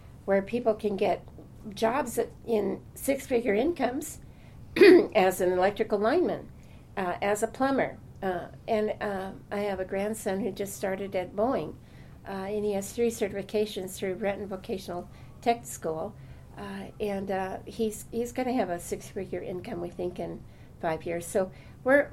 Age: 60-79